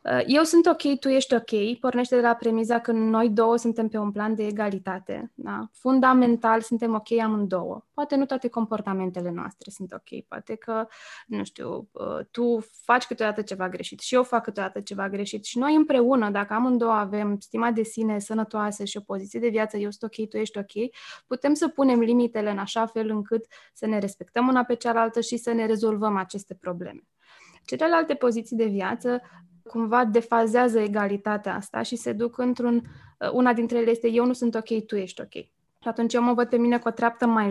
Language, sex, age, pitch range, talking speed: Romanian, female, 20-39, 205-240 Hz, 195 wpm